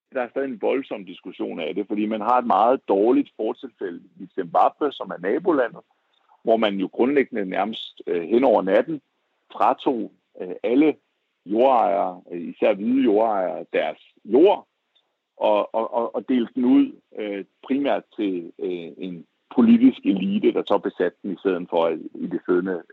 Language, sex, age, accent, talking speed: Danish, male, 60-79, native, 150 wpm